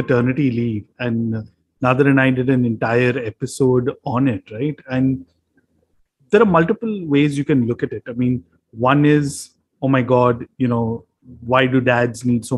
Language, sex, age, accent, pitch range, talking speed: English, male, 30-49, Indian, 115-140 Hz, 175 wpm